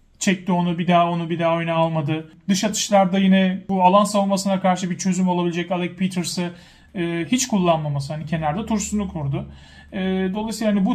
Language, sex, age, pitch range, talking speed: Turkish, male, 40-59, 175-200 Hz, 175 wpm